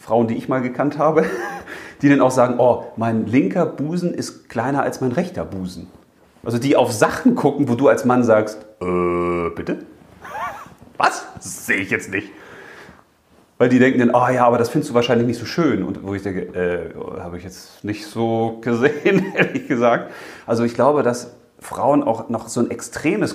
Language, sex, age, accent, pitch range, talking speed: German, male, 30-49, German, 100-135 Hz, 195 wpm